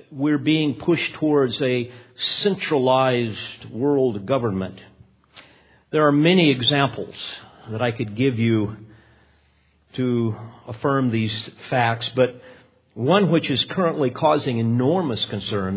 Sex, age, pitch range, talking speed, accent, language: male, 50-69, 115-140 Hz, 110 wpm, American, English